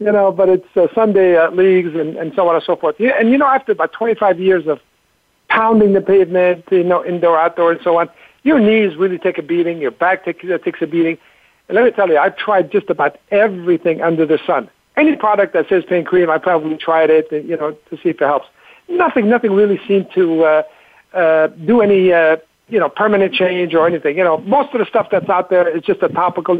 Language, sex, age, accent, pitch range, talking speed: English, male, 60-79, American, 165-200 Hz, 235 wpm